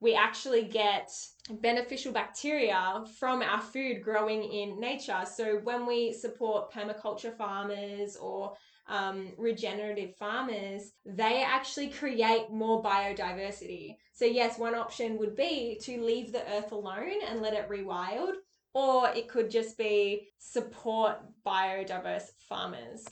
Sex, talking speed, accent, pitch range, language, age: female, 125 wpm, Australian, 205-235 Hz, English, 10-29